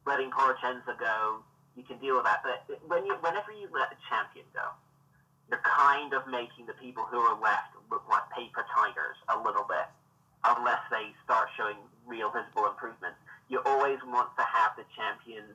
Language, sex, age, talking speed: English, male, 30-49, 175 wpm